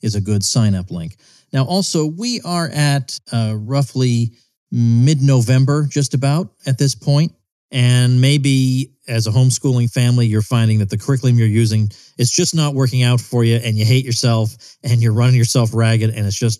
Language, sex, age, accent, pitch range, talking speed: English, male, 40-59, American, 110-135 Hz, 180 wpm